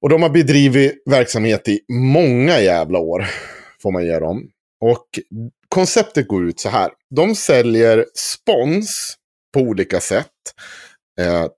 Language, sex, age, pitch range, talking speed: Swedish, male, 30-49, 95-130 Hz, 135 wpm